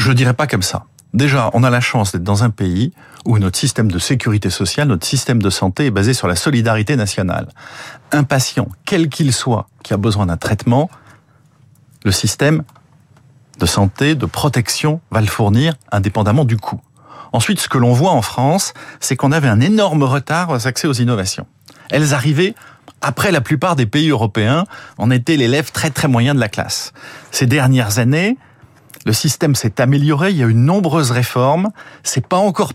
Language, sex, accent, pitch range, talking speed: French, male, French, 115-155 Hz, 190 wpm